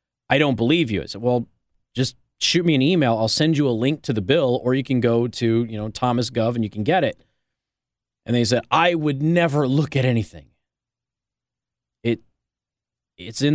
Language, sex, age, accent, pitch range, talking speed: English, male, 30-49, American, 110-135 Hz, 205 wpm